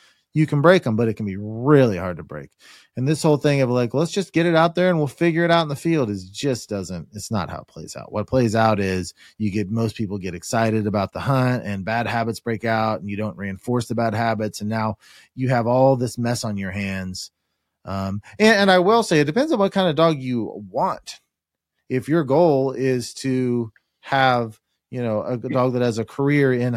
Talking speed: 240 wpm